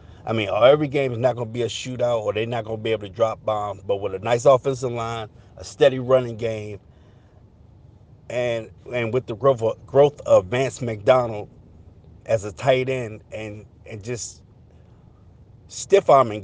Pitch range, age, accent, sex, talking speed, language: 105-125 Hz, 50-69, American, male, 170 wpm, English